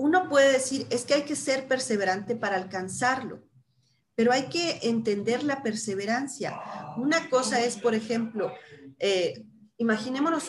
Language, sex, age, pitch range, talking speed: Spanish, female, 40-59, 220-290 Hz, 135 wpm